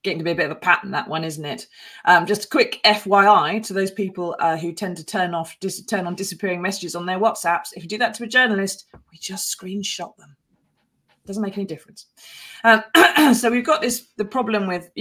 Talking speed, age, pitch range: 235 wpm, 30-49, 165-220 Hz